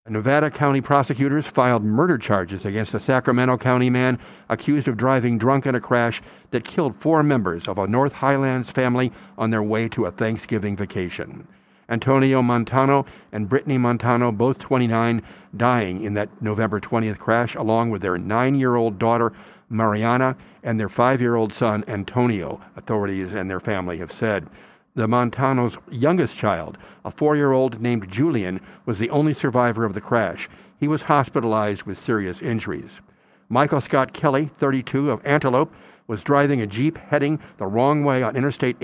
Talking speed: 155 wpm